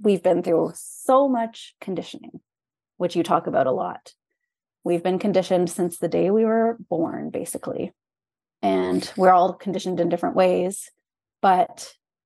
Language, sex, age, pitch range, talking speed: English, female, 20-39, 175-215 Hz, 145 wpm